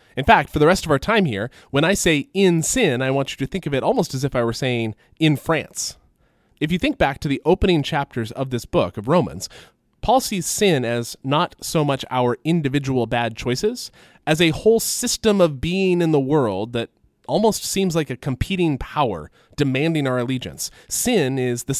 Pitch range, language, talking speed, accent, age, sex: 120-165 Hz, English, 205 wpm, American, 20-39, male